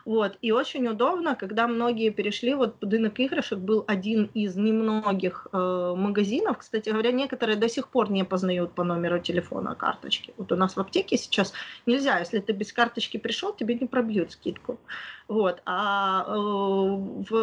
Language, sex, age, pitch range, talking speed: Ukrainian, female, 20-39, 210-255 Hz, 165 wpm